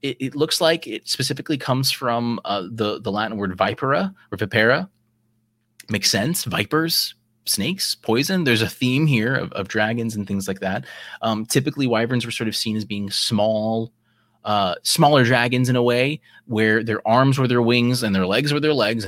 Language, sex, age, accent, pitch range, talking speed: English, male, 30-49, American, 100-125 Hz, 190 wpm